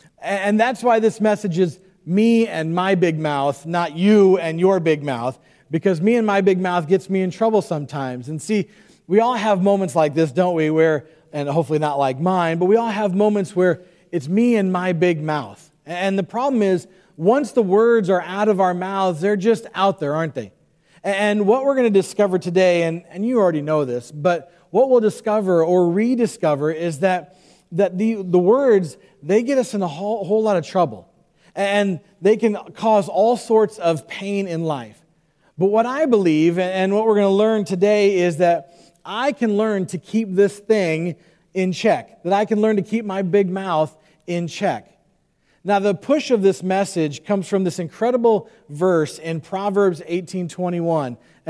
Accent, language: American, English